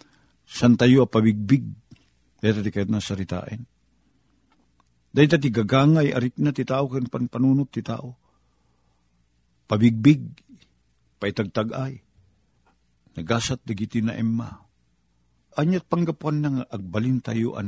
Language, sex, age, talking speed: Filipino, male, 50-69, 95 wpm